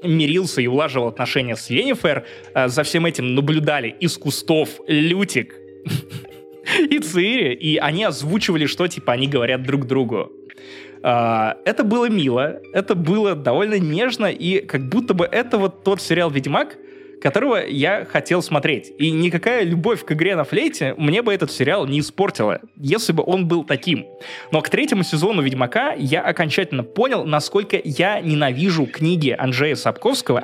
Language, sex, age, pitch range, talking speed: Russian, male, 20-39, 130-190 Hz, 150 wpm